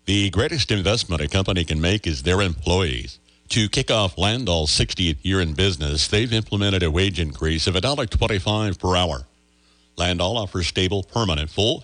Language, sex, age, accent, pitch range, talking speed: English, male, 60-79, American, 80-105 Hz, 160 wpm